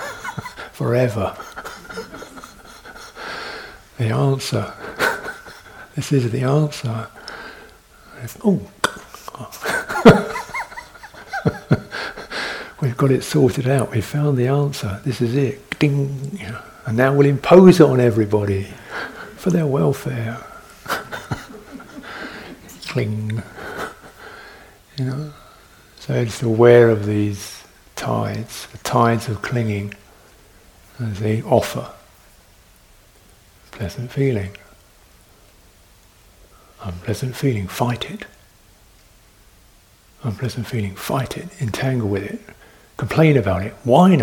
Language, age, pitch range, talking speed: English, 60-79, 105-150 Hz, 90 wpm